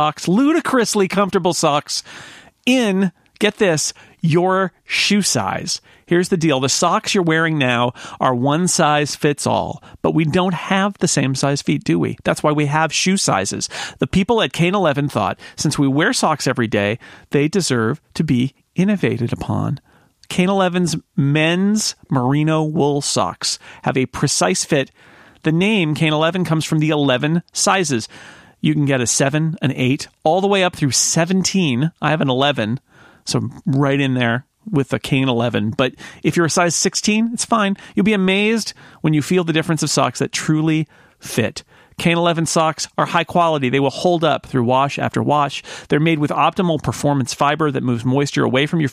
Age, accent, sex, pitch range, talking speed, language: 40-59, American, male, 135-180 Hz, 180 wpm, English